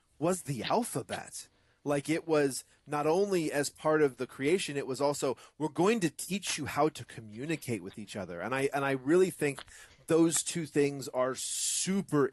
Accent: American